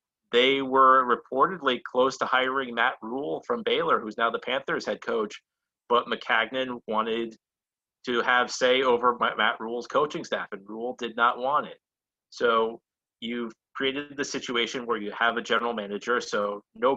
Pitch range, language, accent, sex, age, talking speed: 110-125 Hz, English, American, male, 30-49, 165 wpm